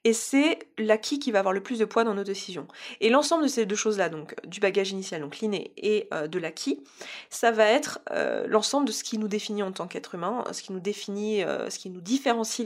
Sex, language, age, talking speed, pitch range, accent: female, French, 20-39, 245 wpm, 195-245 Hz, French